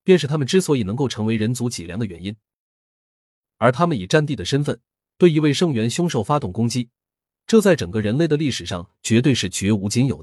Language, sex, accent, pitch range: Chinese, male, native, 100-150 Hz